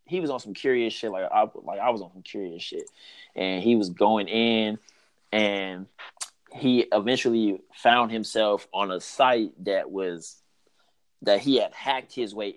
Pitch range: 95-110 Hz